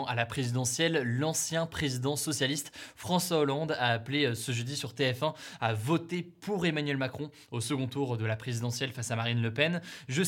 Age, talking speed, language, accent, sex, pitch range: 20-39, 180 wpm, French, French, male, 125-155 Hz